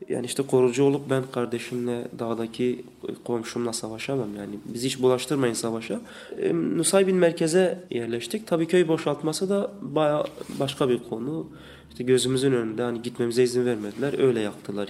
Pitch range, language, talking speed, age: 120-155 Hz, Turkish, 135 wpm, 30-49